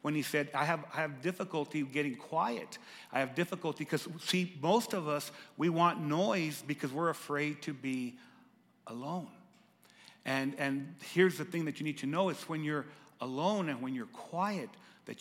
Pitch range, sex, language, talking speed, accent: 135-175 Hz, male, English, 180 wpm, American